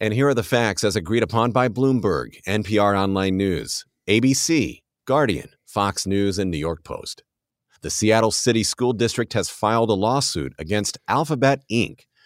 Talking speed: 160 wpm